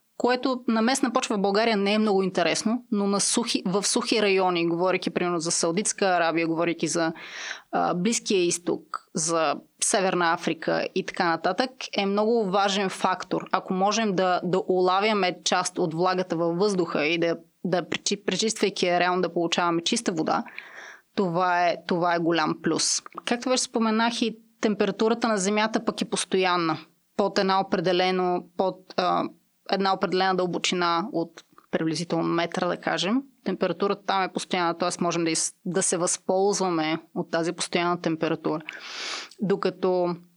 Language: Bulgarian